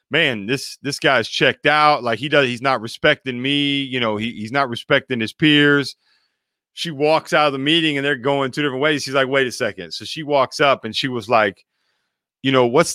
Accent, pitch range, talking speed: American, 120-145 Hz, 225 wpm